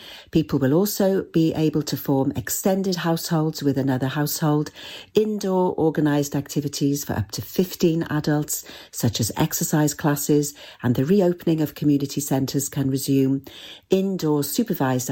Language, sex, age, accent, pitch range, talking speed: English, female, 50-69, British, 135-165 Hz, 135 wpm